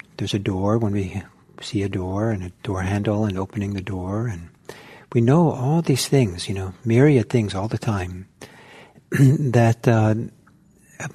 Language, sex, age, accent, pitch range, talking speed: English, male, 60-79, American, 105-135 Hz, 165 wpm